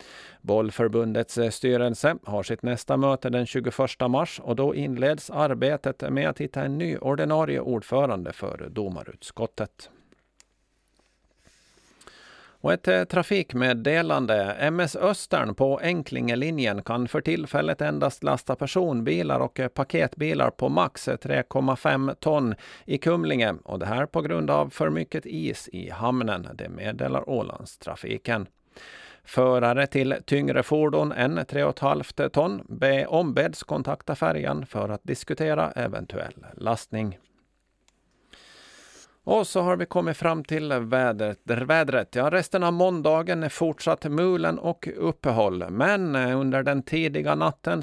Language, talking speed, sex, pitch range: Swedish, 115 wpm, male, 115-155 Hz